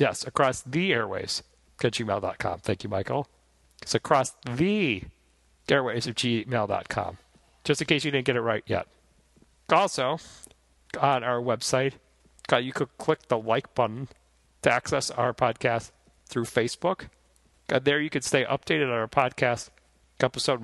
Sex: male